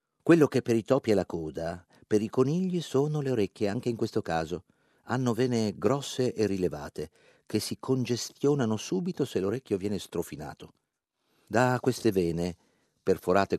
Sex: male